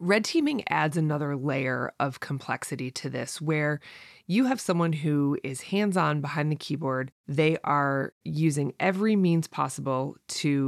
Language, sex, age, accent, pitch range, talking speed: English, female, 20-39, American, 140-170 Hz, 150 wpm